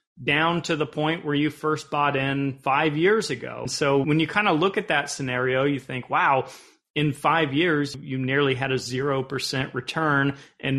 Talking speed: 195 wpm